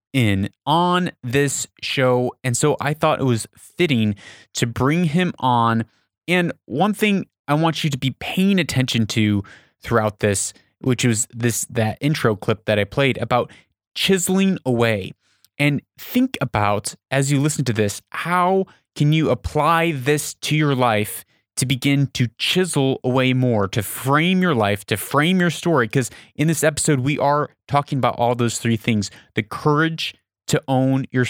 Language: English